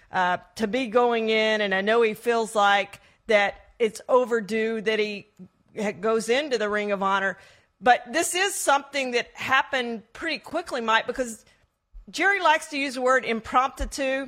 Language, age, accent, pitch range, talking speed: English, 40-59, American, 220-265 Hz, 170 wpm